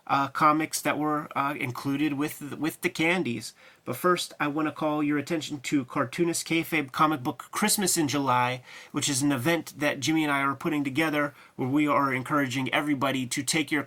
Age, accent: 30-49, American